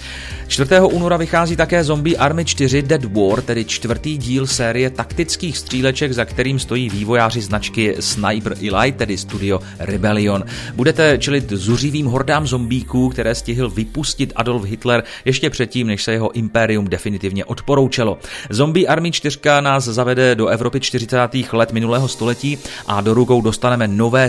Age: 30-49